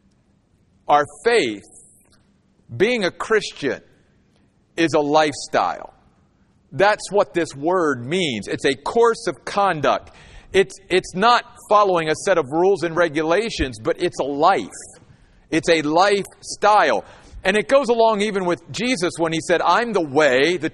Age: 50-69